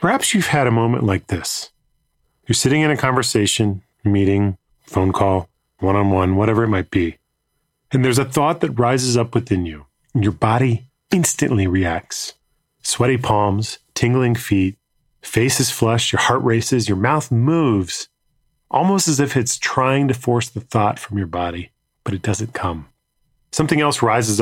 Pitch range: 100-135 Hz